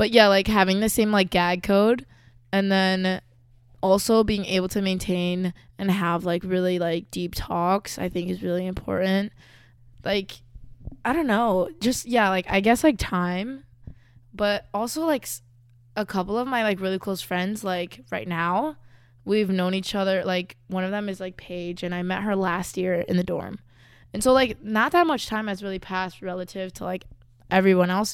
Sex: female